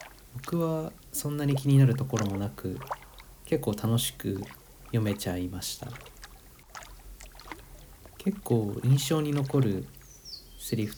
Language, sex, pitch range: Japanese, male, 100-130 Hz